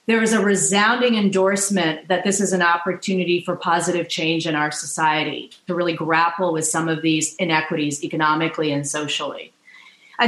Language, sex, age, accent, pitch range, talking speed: English, female, 40-59, American, 160-195 Hz, 165 wpm